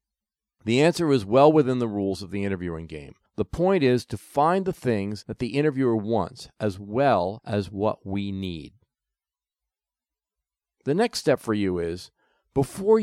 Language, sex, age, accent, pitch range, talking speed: English, male, 50-69, American, 105-150 Hz, 160 wpm